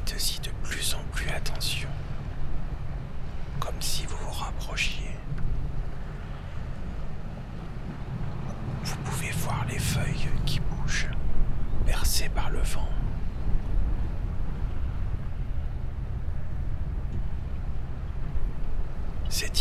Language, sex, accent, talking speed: French, male, French, 70 wpm